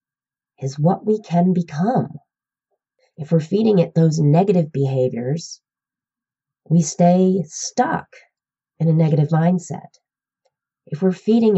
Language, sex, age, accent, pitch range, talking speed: English, female, 30-49, American, 150-200 Hz, 115 wpm